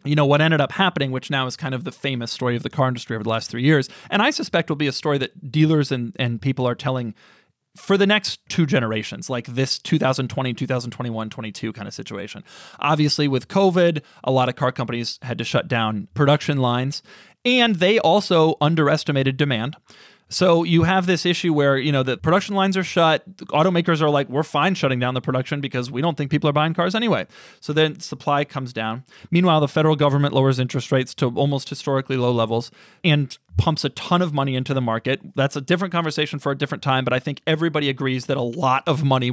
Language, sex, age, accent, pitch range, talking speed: English, male, 30-49, American, 130-165 Hz, 220 wpm